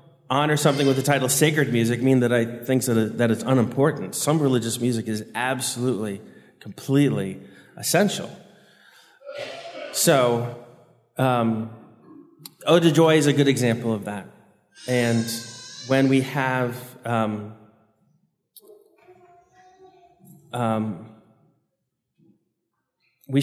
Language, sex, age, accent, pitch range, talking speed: English, male, 30-49, American, 115-145 Hz, 100 wpm